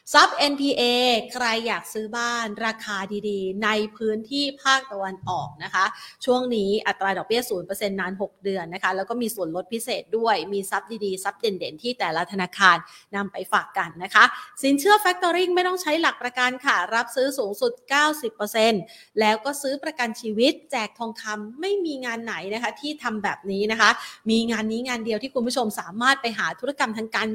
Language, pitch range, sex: Thai, 210-270 Hz, female